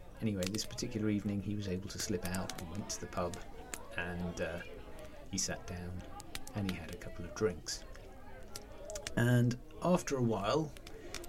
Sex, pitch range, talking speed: male, 90-110 Hz, 165 wpm